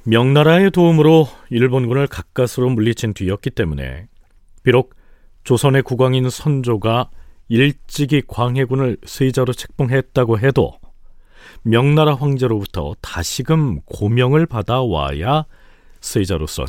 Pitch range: 95-145 Hz